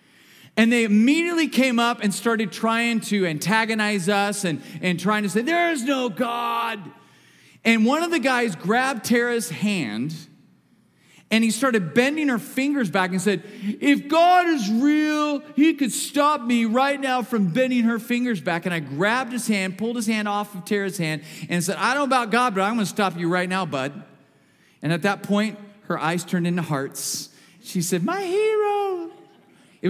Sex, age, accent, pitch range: male, 40-59, American, 200-285 Hz